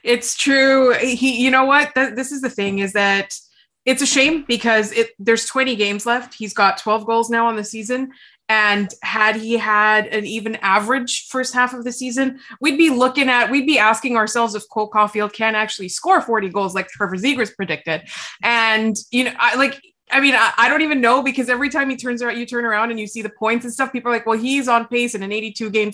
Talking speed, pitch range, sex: 235 wpm, 210-250 Hz, female